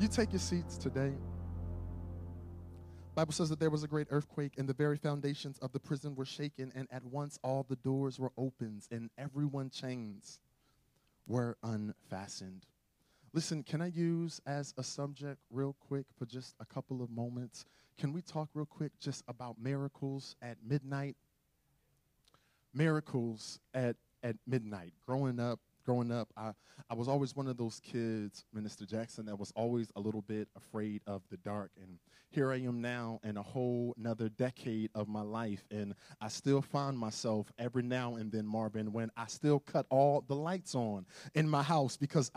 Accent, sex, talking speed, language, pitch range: American, male, 175 wpm, English, 110-145 Hz